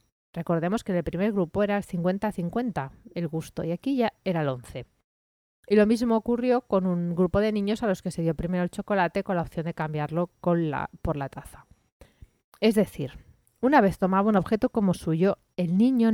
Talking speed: 205 wpm